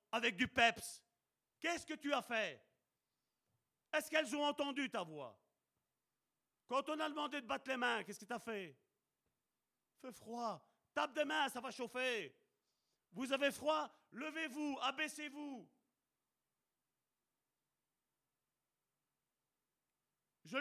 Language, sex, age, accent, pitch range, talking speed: French, male, 40-59, French, 235-290 Hz, 120 wpm